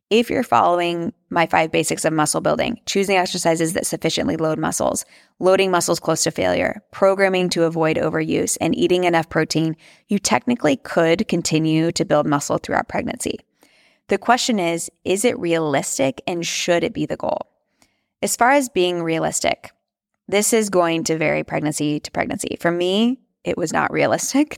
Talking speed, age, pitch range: 165 wpm, 20-39, 160-185 Hz